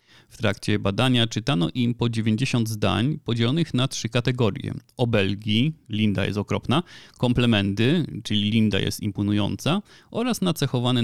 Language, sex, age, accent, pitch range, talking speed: Polish, male, 30-49, native, 105-130 Hz, 125 wpm